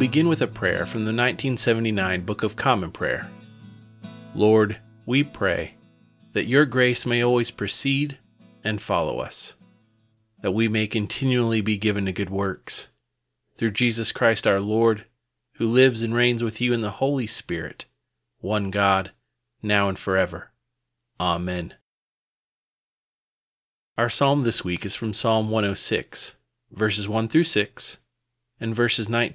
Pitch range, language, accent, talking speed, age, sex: 100-120 Hz, English, American, 135 wpm, 30-49, male